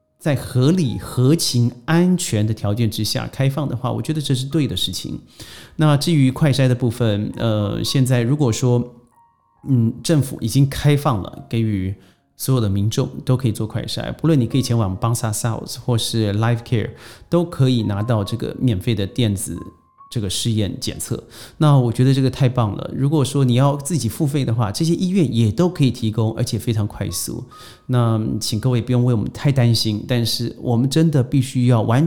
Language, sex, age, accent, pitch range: Chinese, male, 30-49, native, 110-135 Hz